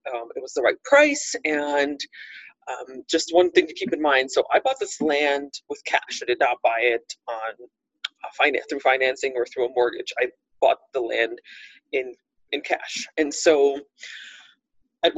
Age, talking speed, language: 30-49, 180 wpm, English